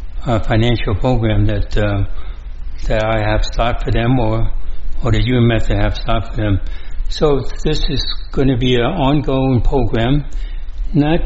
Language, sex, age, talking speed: English, male, 60-79, 160 wpm